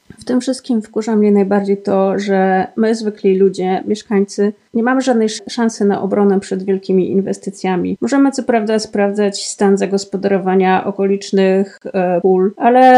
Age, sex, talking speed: 30-49, female, 140 wpm